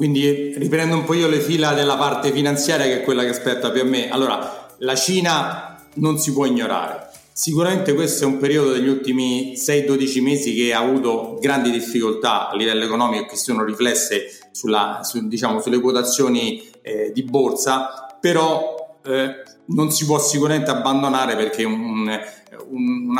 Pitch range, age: 120-145 Hz, 40-59